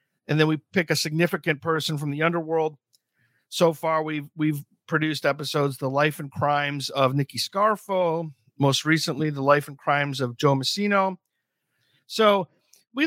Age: 50-69